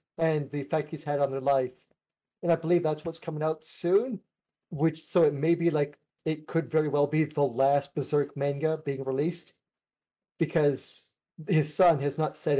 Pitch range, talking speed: 140-160 Hz, 185 wpm